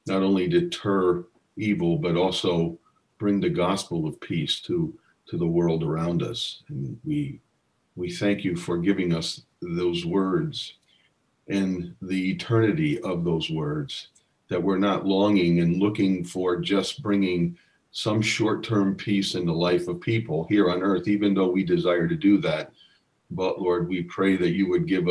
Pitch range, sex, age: 85-105 Hz, male, 50-69